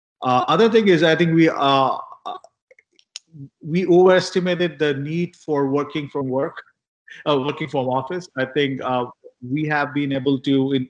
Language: English